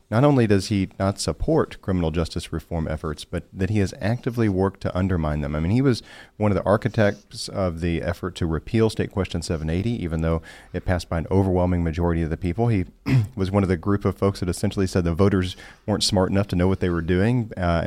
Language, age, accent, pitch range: English, 40-59, American, 85-110 Hz